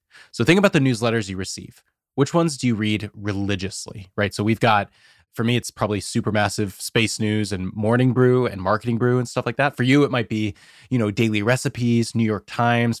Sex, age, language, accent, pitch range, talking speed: male, 20-39, English, American, 105-130 Hz, 215 wpm